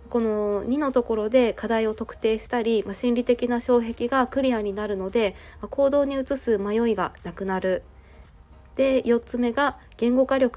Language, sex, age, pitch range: Japanese, female, 20-39, 195-245 Hz